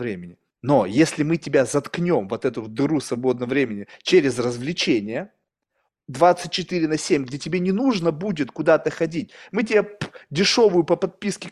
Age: 20-39